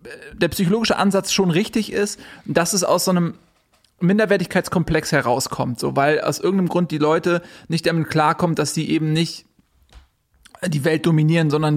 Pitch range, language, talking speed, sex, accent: 150-190 Hz, German, 160 wpm, male, German